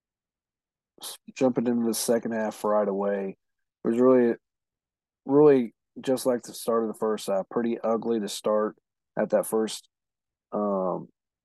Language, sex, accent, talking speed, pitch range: English, male, American, 135 wpm, 105-120 Hz